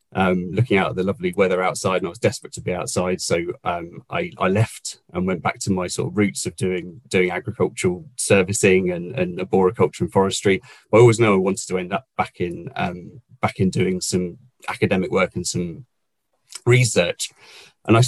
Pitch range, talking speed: 95-120 Hz, 205 wpm